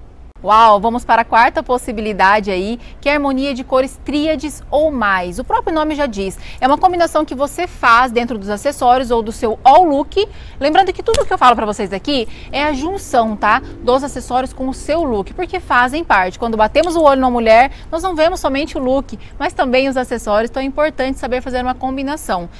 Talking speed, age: 210 wpm, 20-39